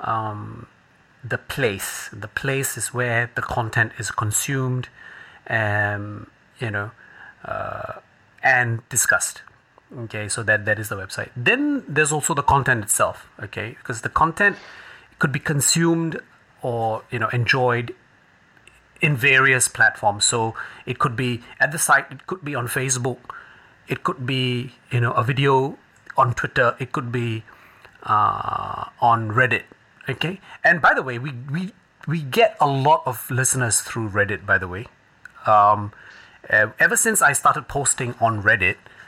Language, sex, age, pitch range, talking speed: English, male, 30-49, 110-145 Hz, 150 wpm